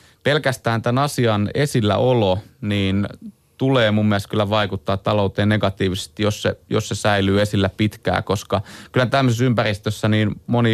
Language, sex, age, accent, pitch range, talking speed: Finnish, male, 30-49, native, 100-115 Hz, 145 wpm